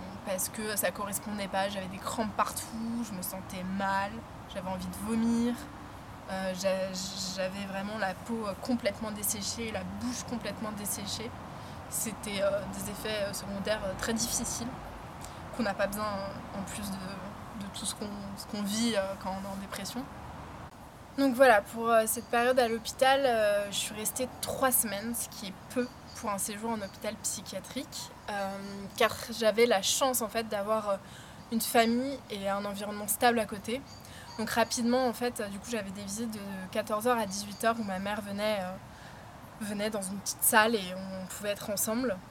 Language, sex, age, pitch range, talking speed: French, female, 20-39, 195-230 Hz, 175 wpm